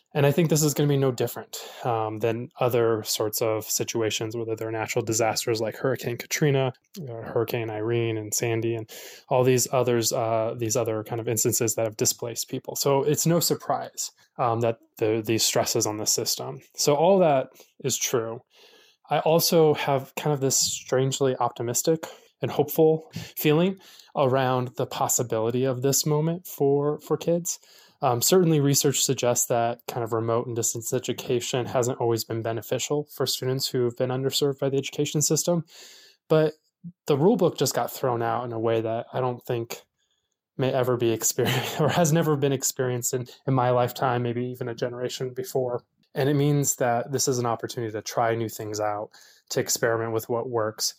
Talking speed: 180 wpm